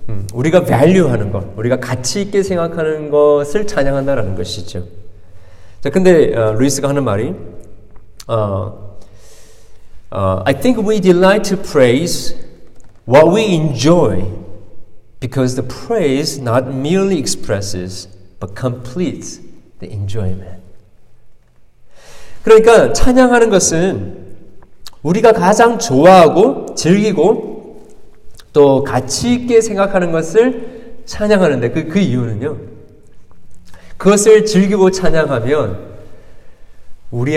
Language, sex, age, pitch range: Korean, male, 40-59, 105-165 Hz